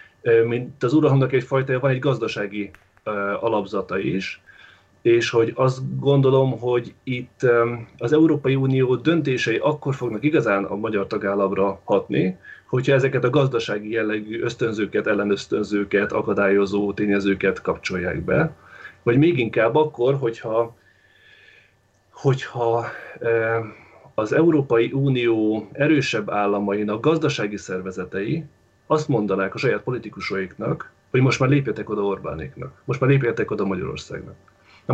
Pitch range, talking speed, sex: 100-130 Hz, 120 wpm, male